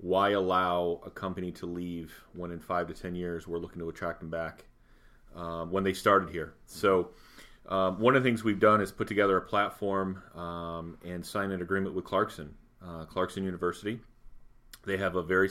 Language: English